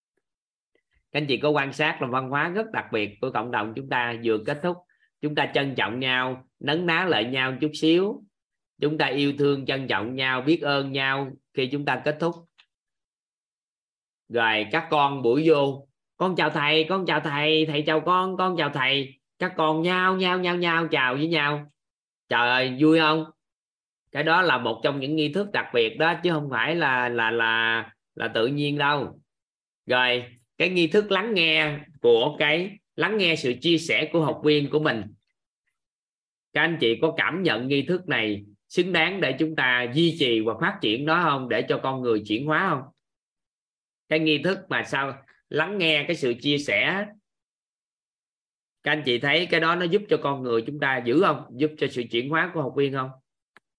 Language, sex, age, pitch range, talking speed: Vietnamese, male, 20-39, 130-165 Hz, 200 wpm